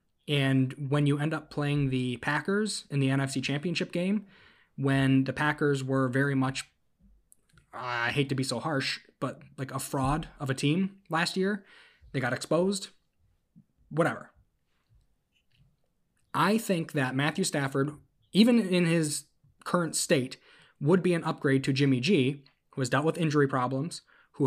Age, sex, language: 20-39, male, English